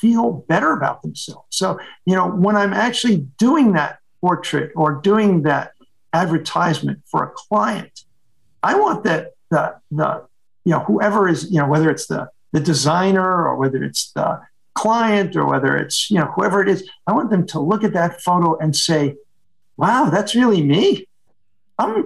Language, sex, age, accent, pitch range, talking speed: Spanish, male, 50-69, American, 160-215 Hz, 175 wpm